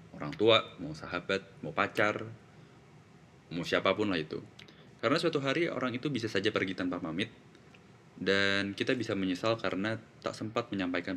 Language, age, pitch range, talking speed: Indonesian, 20-39, 95-140 Hz, 150 wpm